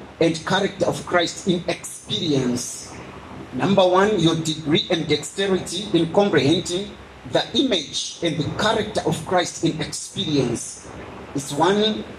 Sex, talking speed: male, 125 wpm